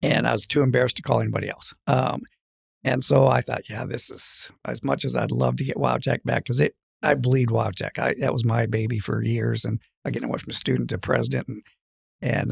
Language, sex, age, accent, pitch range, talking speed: English, male, 50-69, American, 95-135 Hz, 240 wpm